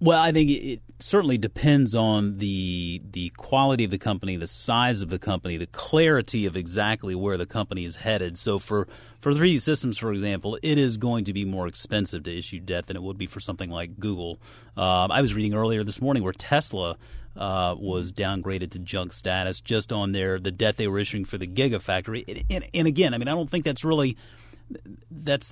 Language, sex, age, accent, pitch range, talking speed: English, male, 30-49, American, 95-125 Hz, 210 wpm